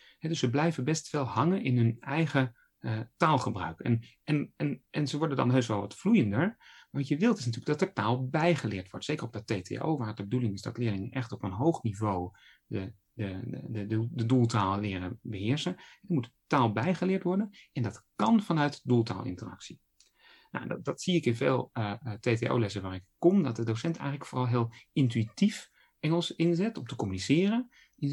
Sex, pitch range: male, 110-155 Hz